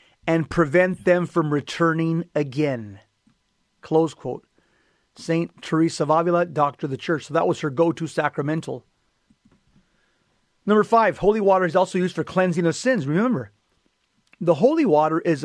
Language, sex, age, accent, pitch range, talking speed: English, male, 40-59, American, 155-195 Hz, 150 wpm